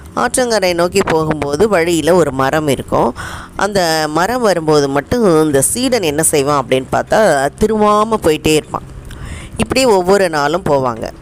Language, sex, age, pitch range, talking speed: Tamil, female, 20-39, 145-185 Hz, 130 wpm